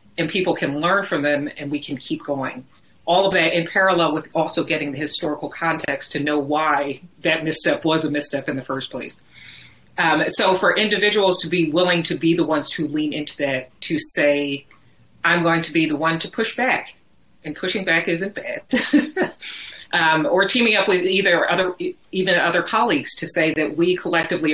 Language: English